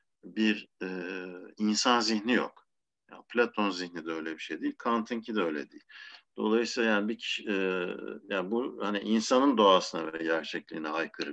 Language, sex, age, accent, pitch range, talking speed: Turkish, male, 50-69, native, 90-125 Hz, 145 wpm